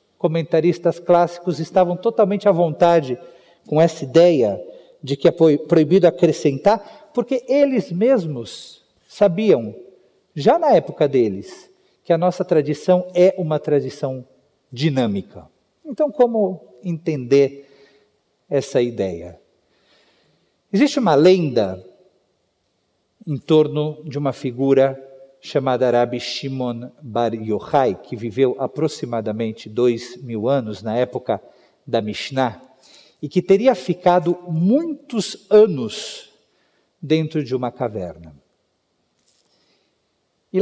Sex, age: male, 50-69